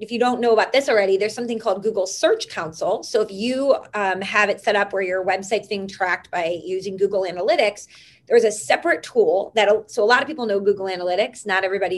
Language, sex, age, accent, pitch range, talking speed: English, female, 30-49, American, 190-240 Hz, 225 wpm